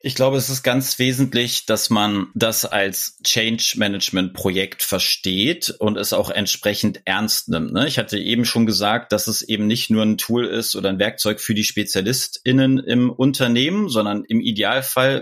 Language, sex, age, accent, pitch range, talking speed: German, male, 30-49, German, 110-130 Hz, 165 wpm